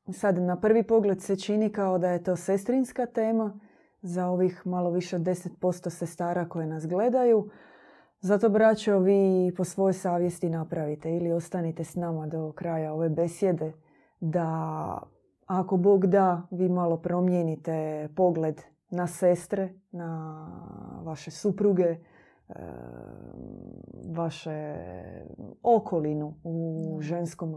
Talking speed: 120 wpm